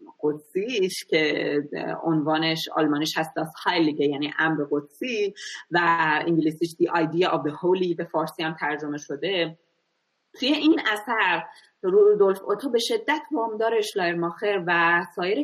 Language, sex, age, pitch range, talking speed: Persian, female, 30-49, 160-200 Hz, 115 wpm